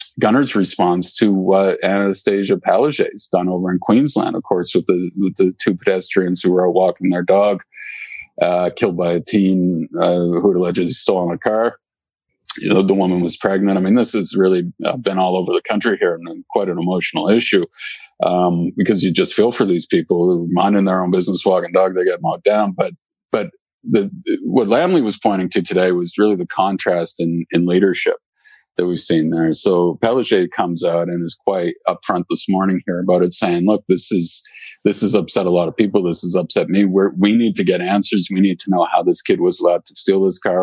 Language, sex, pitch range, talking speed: English, male, 90-105 Hz, 215 wpm